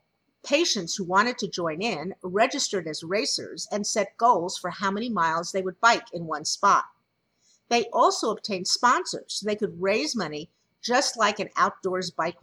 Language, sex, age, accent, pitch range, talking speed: English, female, 50-69, American, 175-230 Hz, 175 wpm